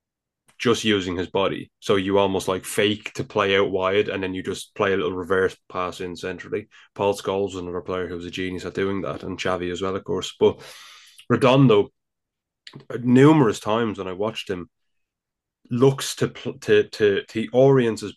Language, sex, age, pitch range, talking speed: English, male, 20-39, 95-110 Hz, 180 wpm